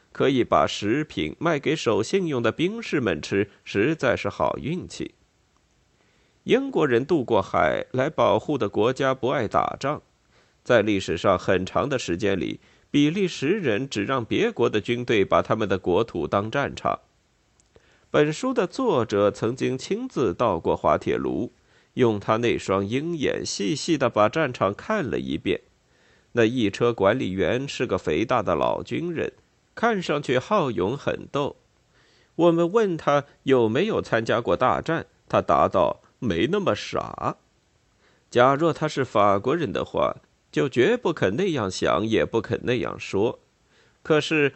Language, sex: Chinese, male